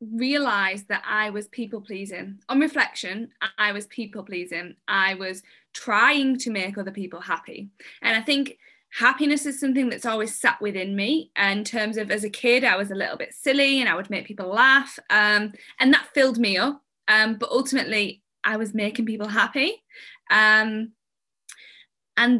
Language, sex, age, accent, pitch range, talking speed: English, female, 10-29, British, 205-255 Hz, 170 wpm